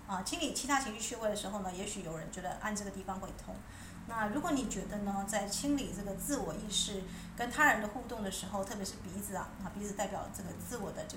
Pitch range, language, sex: 190-225 Hz, Chinese, female